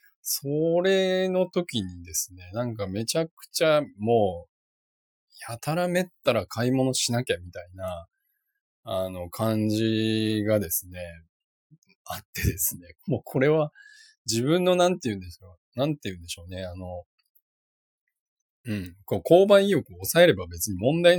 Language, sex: Japanese, male